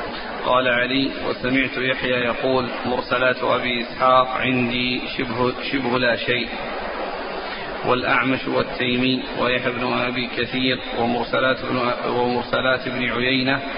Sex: male